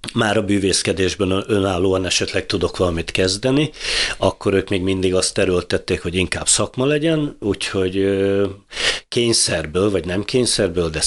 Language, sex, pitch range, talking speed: Hungarian, male, 85-105 Hz, 130 wpm